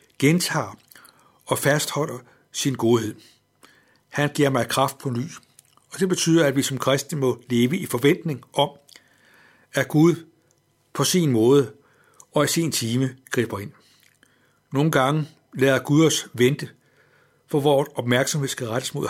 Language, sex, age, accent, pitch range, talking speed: Danish, male, 60-79, native, 125-145 Hz, 145 wpm